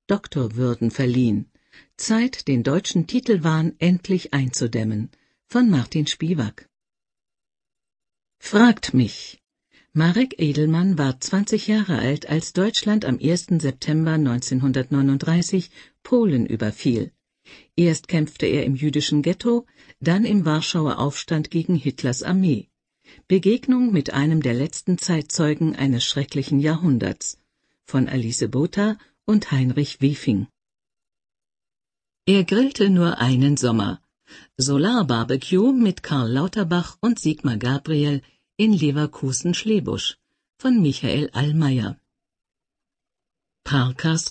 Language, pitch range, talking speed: German, 135-190 Hz, 100 wpm